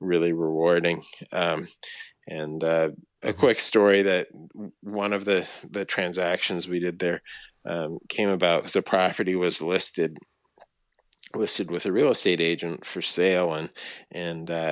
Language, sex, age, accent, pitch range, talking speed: English, male, 30-49, American, 85-140 Hz, 145 wpm